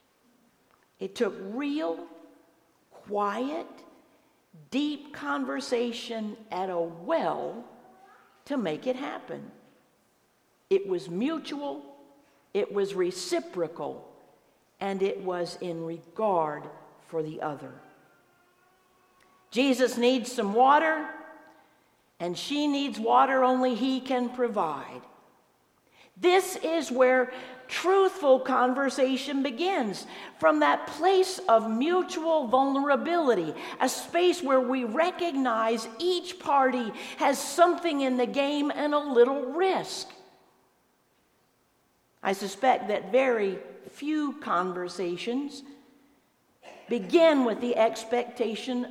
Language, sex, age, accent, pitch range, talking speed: English, female, 50-69, American, 205-295 Hz, 95 wpm